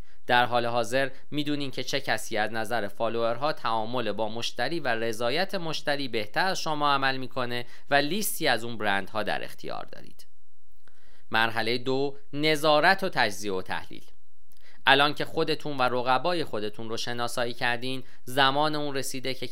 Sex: male